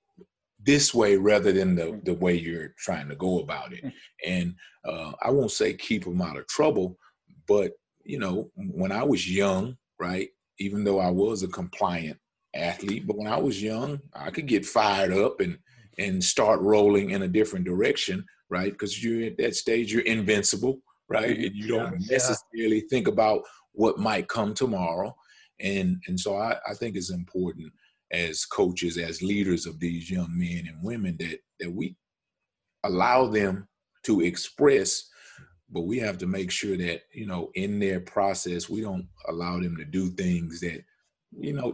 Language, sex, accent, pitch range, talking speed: English, male, American, 90-115 Hz, 175 wpm